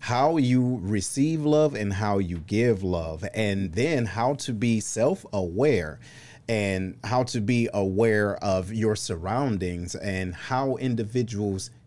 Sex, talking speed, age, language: male, 130 wpm, 30-49, English